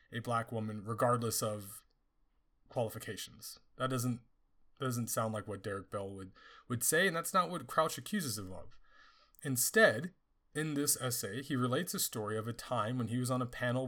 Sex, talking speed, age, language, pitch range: male, 180 wpm, 30-49, English, 115-155 Hz